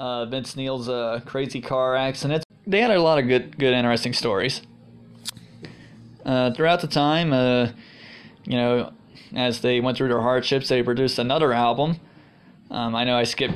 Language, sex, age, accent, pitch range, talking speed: English, male, 20-39, American, 120-135 Hz, 170 wpm